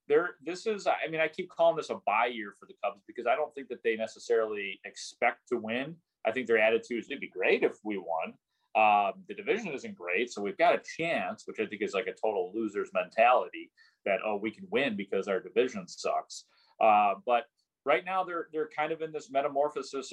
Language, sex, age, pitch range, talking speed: English, male, 30-49, 110-145 Hz, 225 wpm